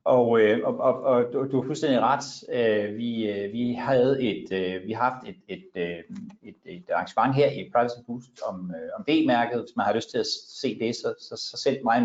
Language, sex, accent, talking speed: Danish, male, native, 200 wpm